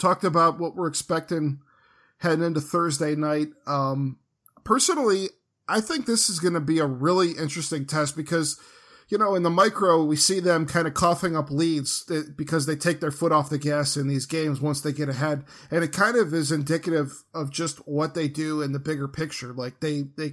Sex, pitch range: male, 140-165 Hz